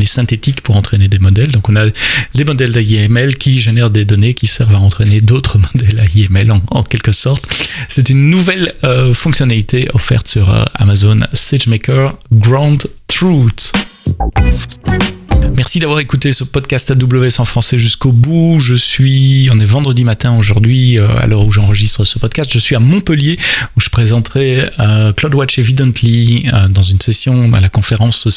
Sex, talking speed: male, 170 wpm